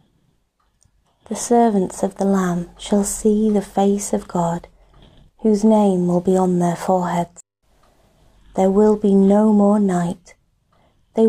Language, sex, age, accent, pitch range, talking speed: English, female, 30-49, British, 185-220 Hz, 135 wpm